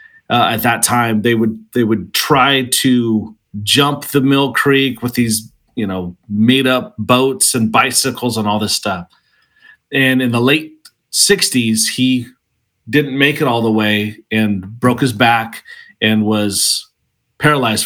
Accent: American